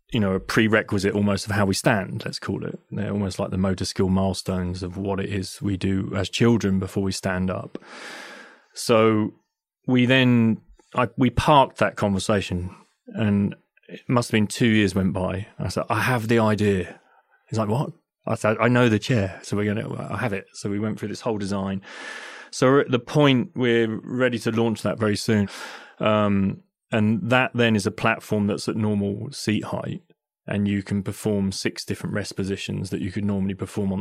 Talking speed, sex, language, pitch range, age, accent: 200 wpm, male, English, 100-115 Hz, 30-49, British